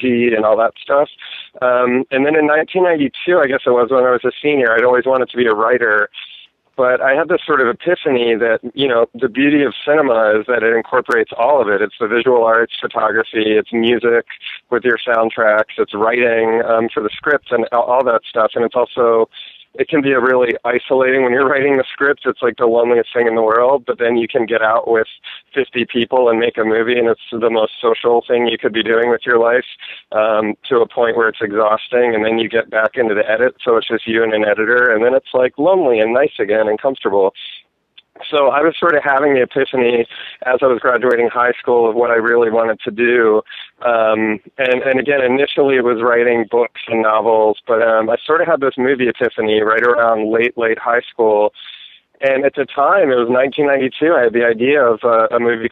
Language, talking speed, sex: English, 225 wpm, male